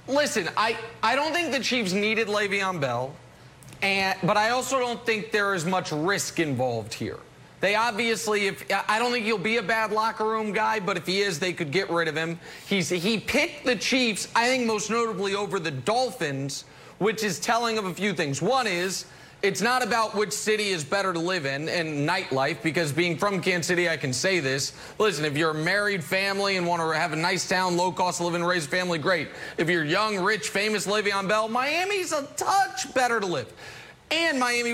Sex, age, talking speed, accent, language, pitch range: male, 30-49, 210 wpm, American, English, 175-225 Hz